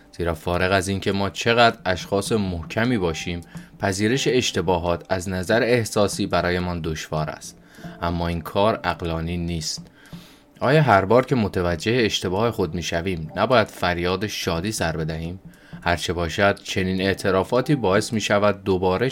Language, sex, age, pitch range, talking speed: Persian, male, 30-49, 85-110 Hz, 140 wpm